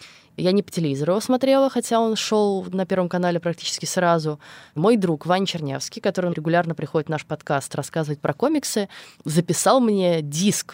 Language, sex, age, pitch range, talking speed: Russian, female, 20-39, 150-185 Hz, 170 wpm